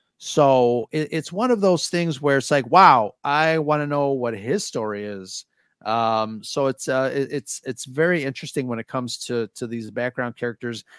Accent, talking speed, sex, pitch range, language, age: American, 185 wpm, male, 120-155 Hz, English, 30-49